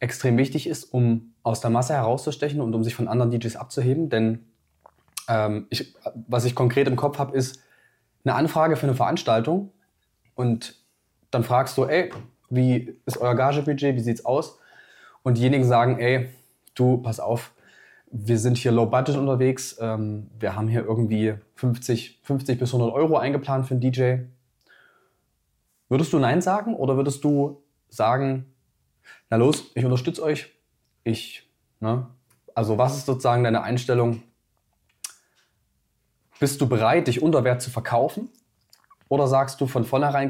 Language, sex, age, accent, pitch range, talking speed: German, male, 20-39, German, 115-135 Hz, 155 wpm